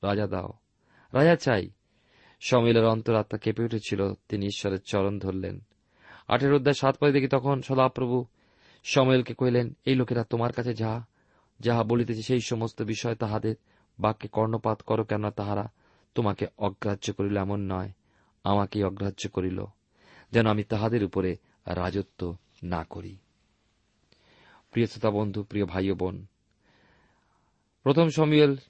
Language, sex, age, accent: Bengali, male, 40-59, native